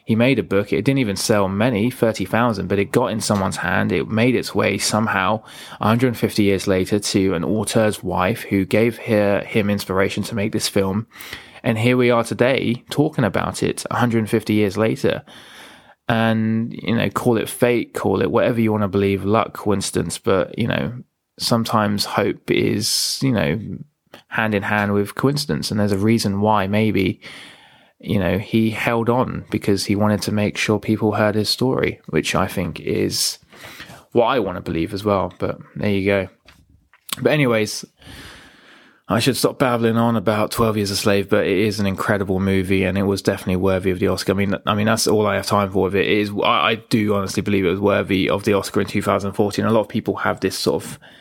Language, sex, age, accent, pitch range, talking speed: English, male, 20-39, British, 100-115 Hz, 215 wpm